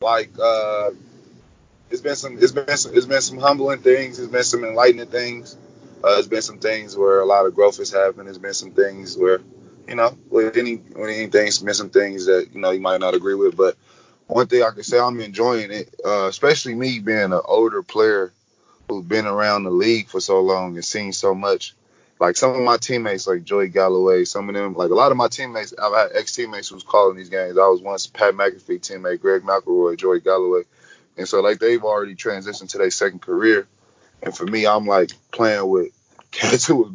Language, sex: English, male